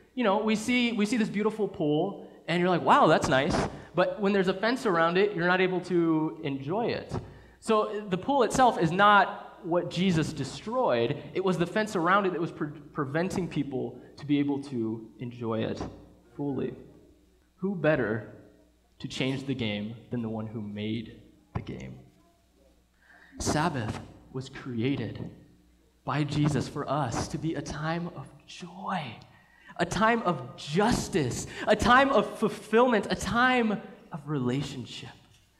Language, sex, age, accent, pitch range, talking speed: English, male, 20-39, American, 120-185 Hz, 155 wpm